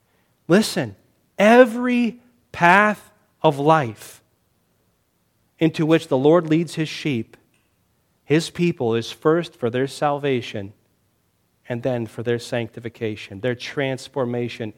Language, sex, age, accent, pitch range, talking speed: English, male, 40-59, American, 125-210 Hz, 105 wpm